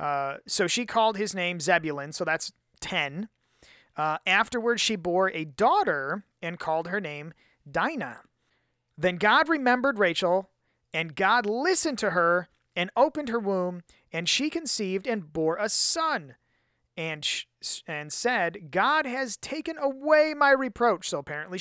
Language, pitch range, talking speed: English, 165-240 Hz, 145 wpm